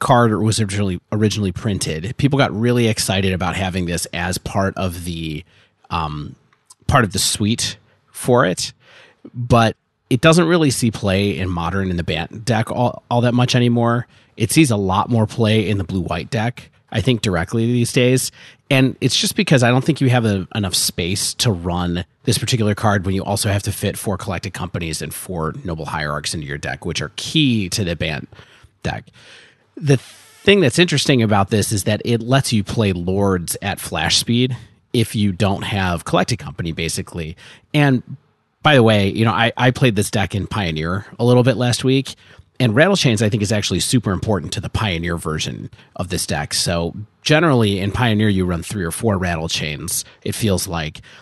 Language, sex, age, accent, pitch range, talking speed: English, male, 30-49, American, 95-120 Hz, 195 wpm